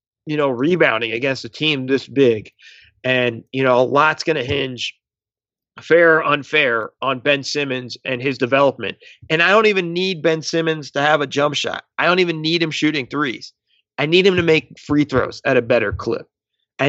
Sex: male